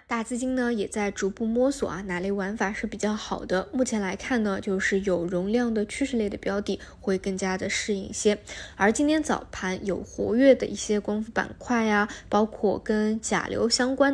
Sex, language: female, Chinese